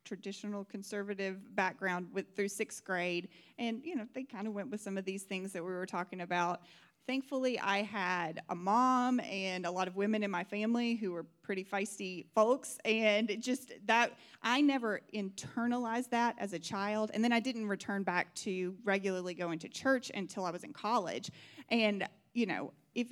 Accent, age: American, 30-49